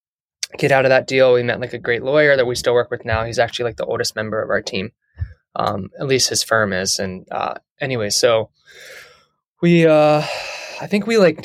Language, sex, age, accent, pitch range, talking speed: English, male, 20-39, American, 115-140 Hz, 220 wpm